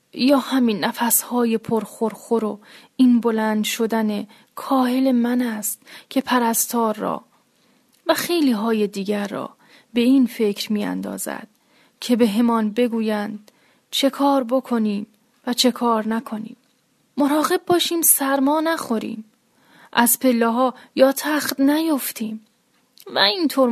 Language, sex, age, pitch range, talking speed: Persian, female, 10-29, 220-255 Hz, 115 wpm